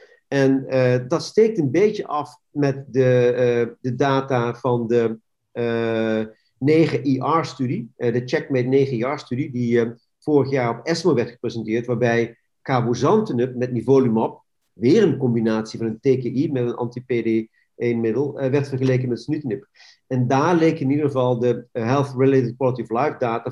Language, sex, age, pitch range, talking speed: Dutch, male, 50-69, 120-145 Hz, 145 wpm